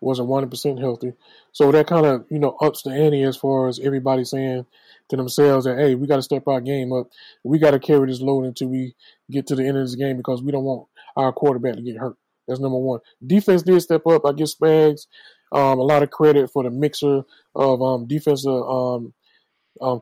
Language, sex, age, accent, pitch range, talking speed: English, male, 20-39, American, 130-150 Hz, 225 wpm